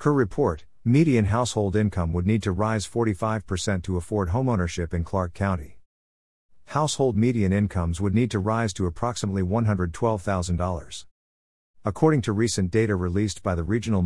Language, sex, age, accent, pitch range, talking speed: English, male, 50-69, American, 90-110 Hz, 145 wpm